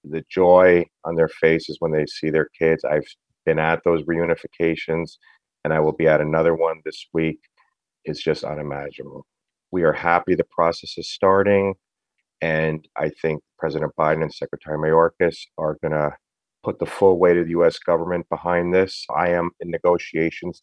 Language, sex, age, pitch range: English, male, 40-59, 80-90 Hz